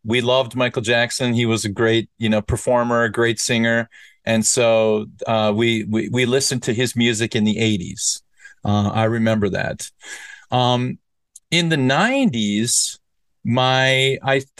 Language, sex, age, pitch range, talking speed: English, male, 40-59, 110-130 Hz, 150 wpm